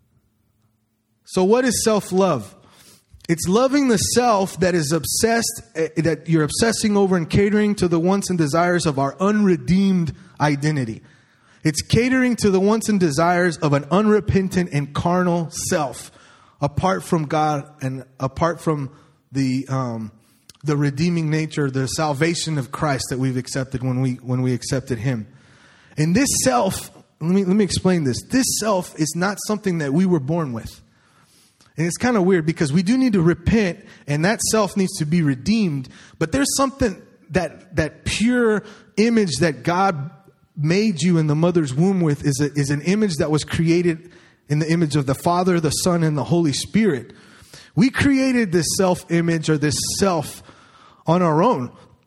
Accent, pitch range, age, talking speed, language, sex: American, 145-195 Hz, 30-49, 170 wpm, English, male